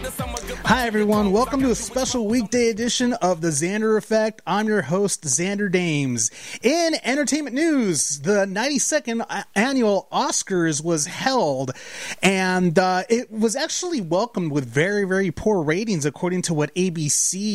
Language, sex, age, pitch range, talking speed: English, male, 30-49, 160-220 Hz, 140 wpm